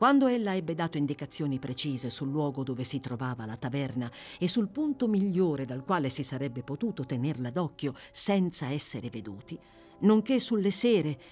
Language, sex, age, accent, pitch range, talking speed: Italian, female, 50-69, native, 145-215 Hz, 160 wpm